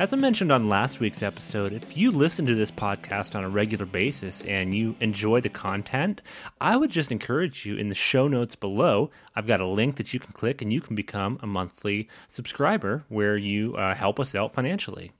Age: 30-49